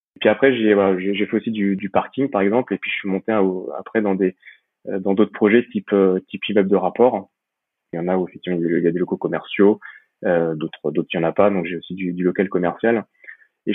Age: 20-39